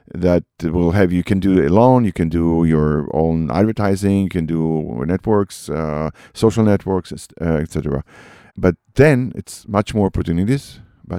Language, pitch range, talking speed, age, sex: English, 85-110 Hz, 155 wpm, 50-69, male